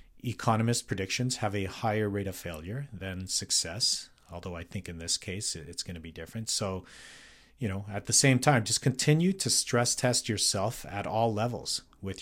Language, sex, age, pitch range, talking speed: English, male, 40-59, 90-115 Hz, 185 wpm